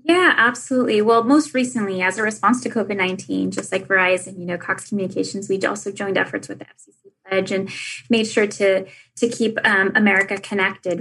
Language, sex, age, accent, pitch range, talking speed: English, female, 10-29, American, 195-220 Hz, 185 wpm